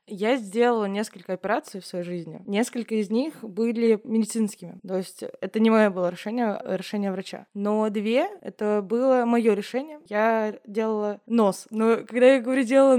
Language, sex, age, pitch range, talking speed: Russian, female, 20-39, 195-240 Hz, 160 wpm